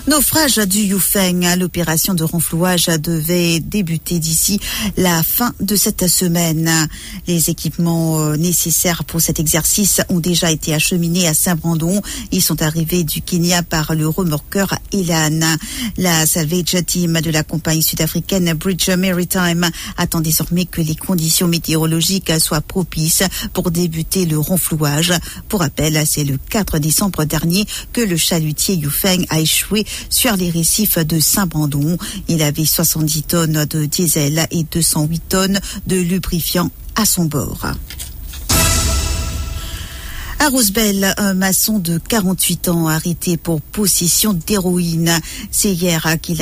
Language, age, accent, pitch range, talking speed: English, 50-69, French, 155-185 Hz, 130 wpm